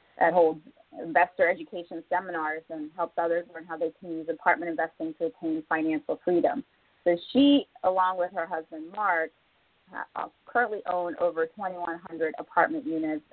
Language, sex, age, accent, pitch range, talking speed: English, female, 30-49, American, 160-195 Hz, 145 wpm